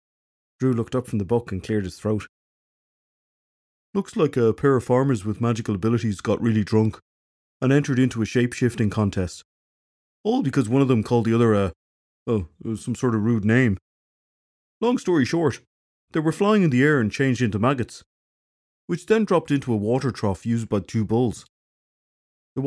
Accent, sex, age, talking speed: Irish, male, 30-49, 180 wpm